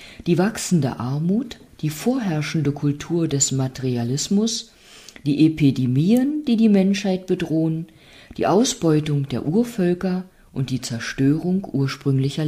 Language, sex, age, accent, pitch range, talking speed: German, female, 50-69, German, 135-195 Hz, 105 wpm